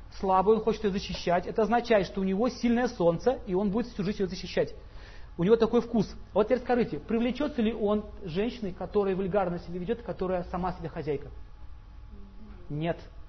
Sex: male